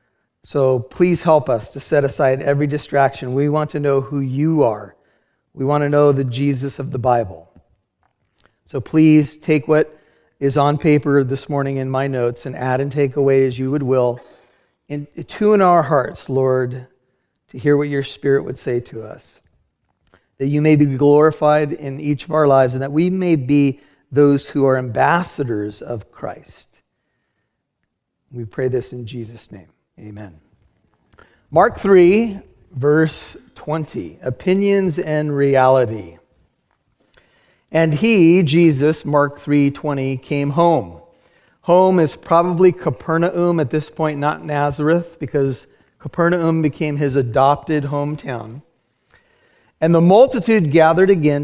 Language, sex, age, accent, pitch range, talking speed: English, male, 40-59, American, 130-160 Hz, 145 wpm